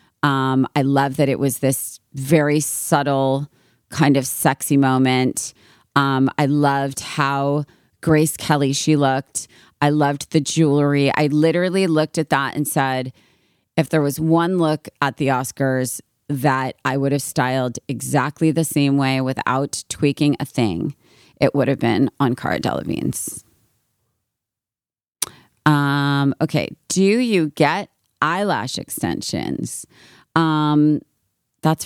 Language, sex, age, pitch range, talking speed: English, female, 30-49, 130-155 Hz, 130 wpm